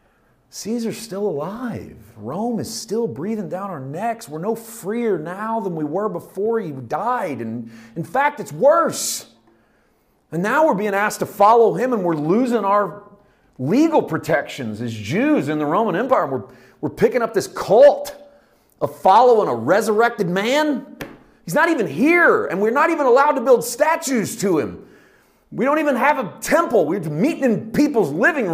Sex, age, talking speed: male, 40-59, 170 wpm